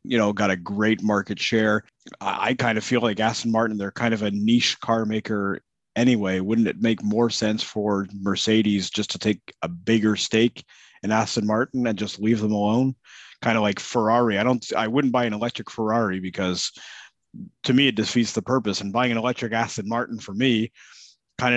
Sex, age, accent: male, 30-49, American